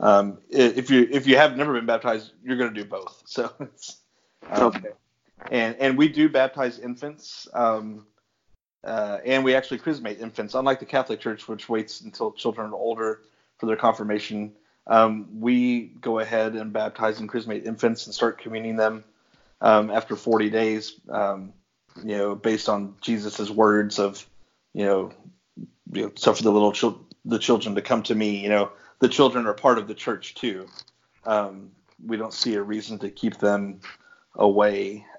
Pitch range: 105-120 Hz